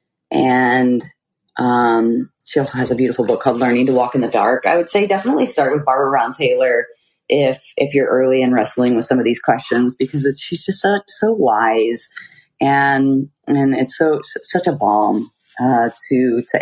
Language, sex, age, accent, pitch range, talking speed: English, female, 30-49, American, 120-140 Hz, 190 wpm